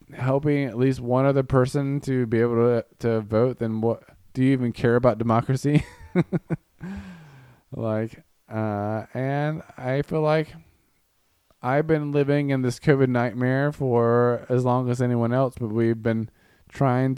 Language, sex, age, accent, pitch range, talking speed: English, male, 20-39, American, 120-145 Hz, 150 wpm